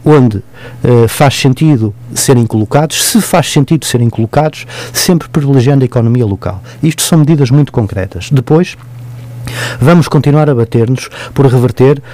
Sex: male